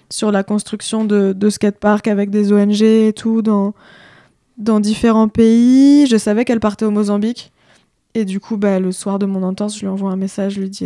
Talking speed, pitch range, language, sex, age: 215 wpm, 195-220 Hz, French, female, 20-39